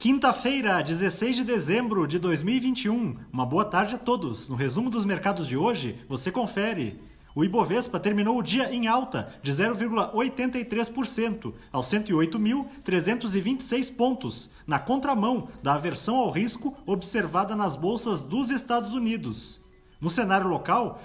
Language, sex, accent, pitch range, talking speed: Portuguese, male, Brazilian, 185-240 Hz, 130 wpm